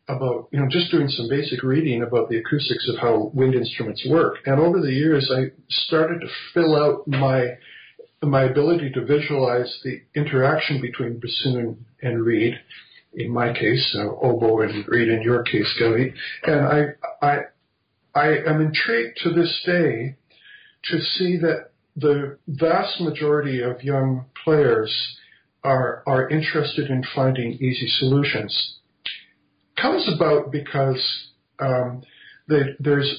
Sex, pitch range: male, 120-145 Hz